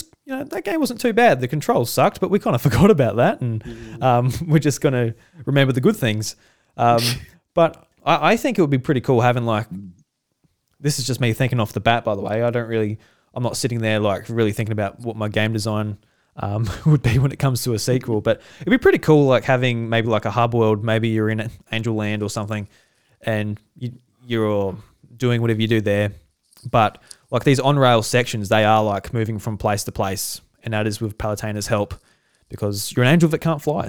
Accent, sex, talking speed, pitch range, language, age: Australian, male, 225 wpm, 110-130 Hz, English, 20-39